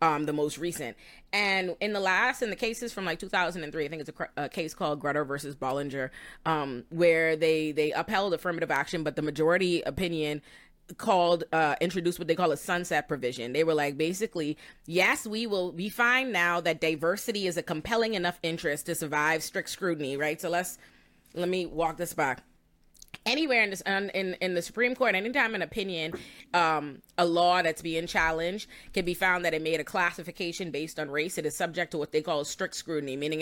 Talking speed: 200 wpm